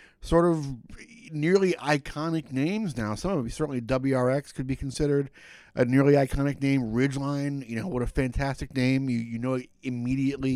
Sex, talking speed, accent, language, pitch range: male, 165 wpm, American, English, 115-130 Hz